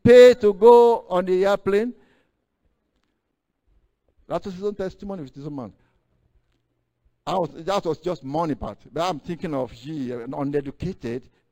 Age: 60-79